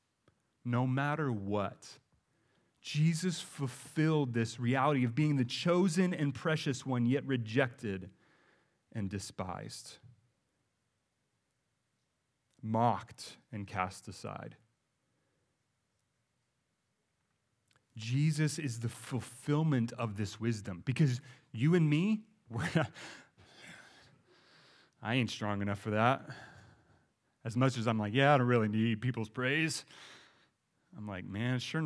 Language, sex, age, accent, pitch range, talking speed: English, male, 30-49, American, 115-145 Hz, 105 wpm